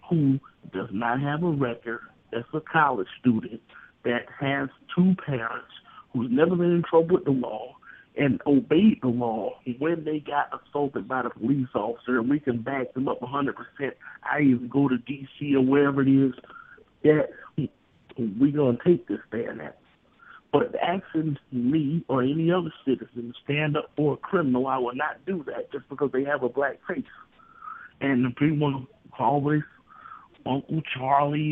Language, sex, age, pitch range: English, male, 50-69, 130-170 Hz